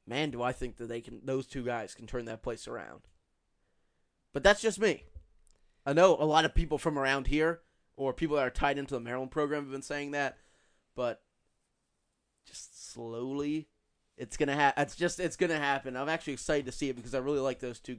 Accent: American